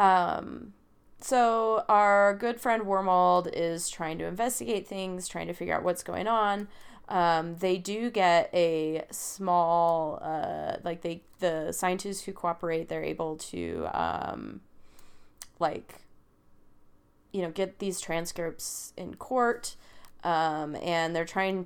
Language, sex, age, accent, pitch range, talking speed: English, female, 30-49, American, 165-190 Hz, 130 wpm